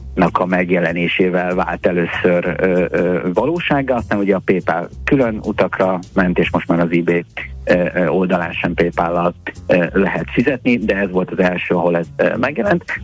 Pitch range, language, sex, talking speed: 85-95 Hz, Hungarian, male, 150 wpm